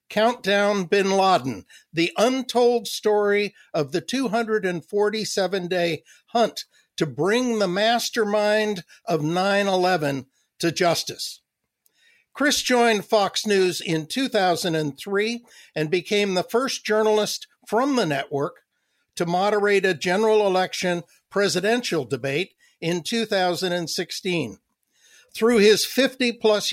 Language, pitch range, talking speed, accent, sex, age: English, 170-215 Hz, 100 wpm, American, male, 60-79